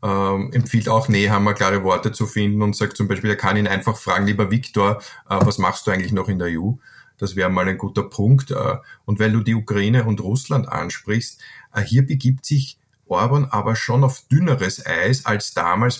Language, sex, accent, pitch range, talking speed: German, male, Austrian, 100-120 Hz, 210 wpm